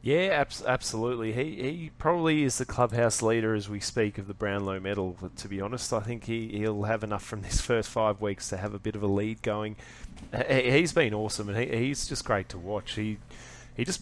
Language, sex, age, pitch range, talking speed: English, male, 20-39, 100-120 Hz, 225 wpm